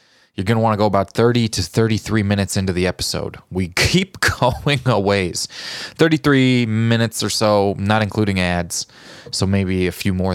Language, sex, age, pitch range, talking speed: English, male, 20-39, 85-110 Hz, 180 wpm